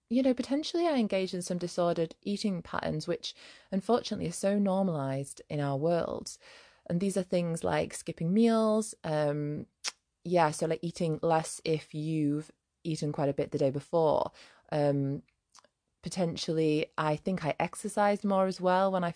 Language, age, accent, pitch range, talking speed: English, 20-39, British, 150-200 Hz, 160 wpm